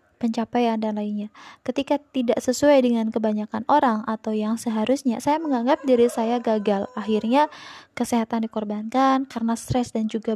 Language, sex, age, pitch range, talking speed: Indonesian, female, 20-39, 220-255 Hz, 140 wpm